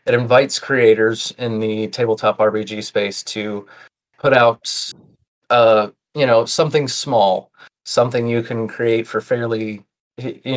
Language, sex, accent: English, male, American